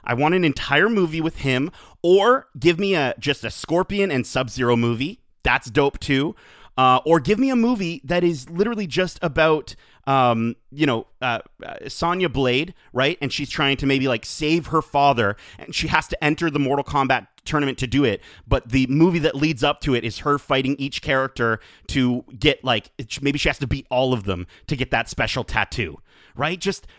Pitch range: 130-175 Hz